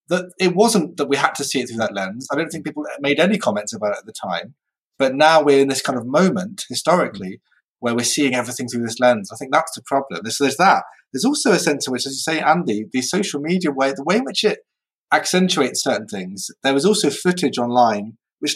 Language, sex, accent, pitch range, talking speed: English, male, British, 125-180 Hz, 245 wpm